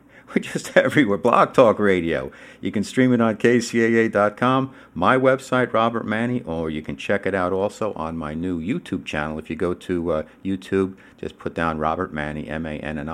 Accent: American